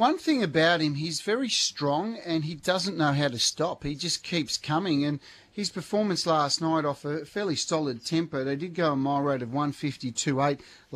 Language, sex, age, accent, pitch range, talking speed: English, male, 40-59, Australian, 140-160 Hz, 195 wpm